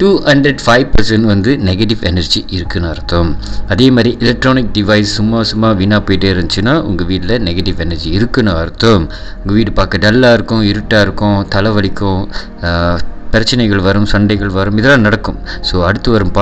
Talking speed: 90 wpm